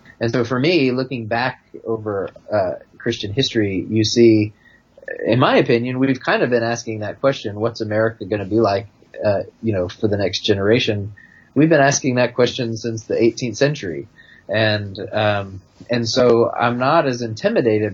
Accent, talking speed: American, 175 wpm